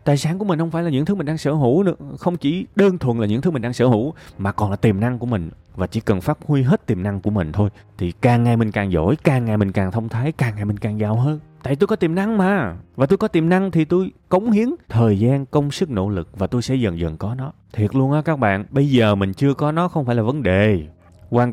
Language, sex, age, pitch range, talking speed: Vietnamese, male, 20-39, 100-135 Hz, 295 wpm